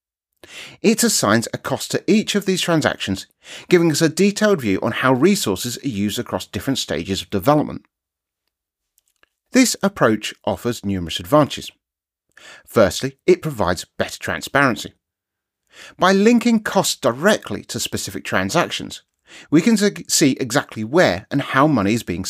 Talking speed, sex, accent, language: 135 wpm, male, British, English